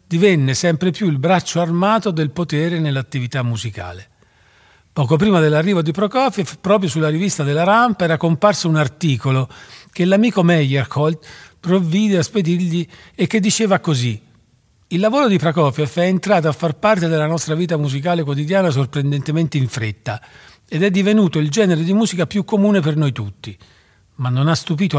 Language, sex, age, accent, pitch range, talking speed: Italian, male, 40-59, native, 125-175 Hz, 160 wpm